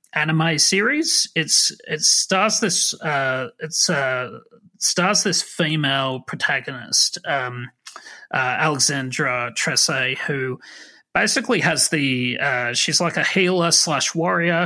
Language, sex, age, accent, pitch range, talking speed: English, male, 30-49, Australian, 130-170 Hz, 115 wpm